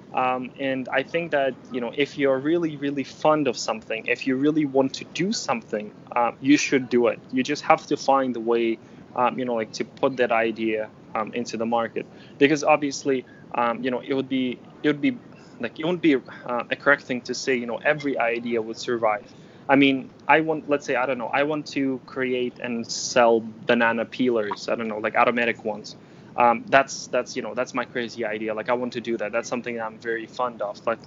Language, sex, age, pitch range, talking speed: English, male, 20-39, 120-140 Hz, 225 wpm